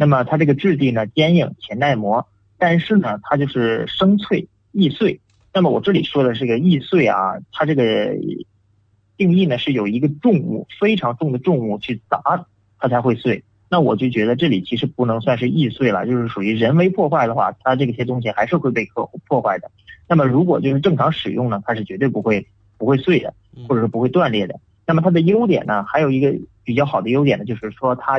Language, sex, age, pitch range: English, male, 30-49, 110-150 Hz